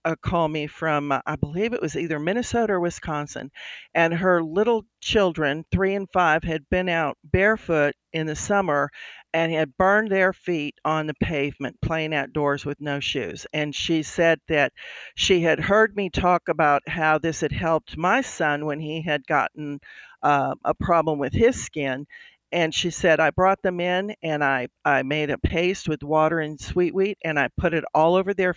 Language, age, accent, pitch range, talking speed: English, 50-69, American, 150-175 Hz, 190 wpm